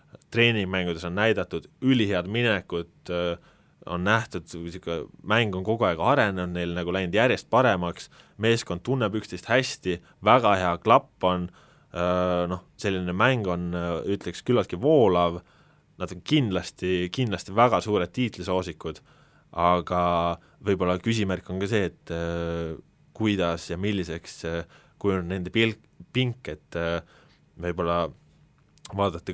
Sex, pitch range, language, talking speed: male, 85-100 Hz, English, 115 wpm